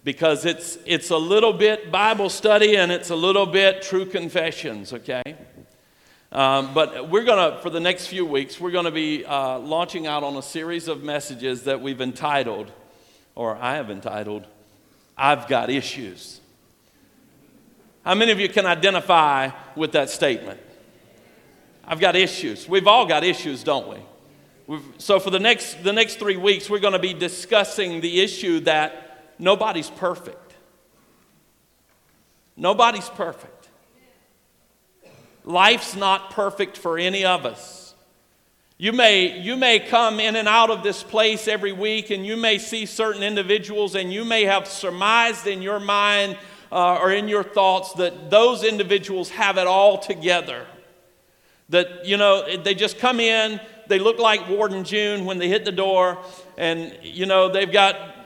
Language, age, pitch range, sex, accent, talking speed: English, 50-69, 170-205 Hz, male, American, 160 wpm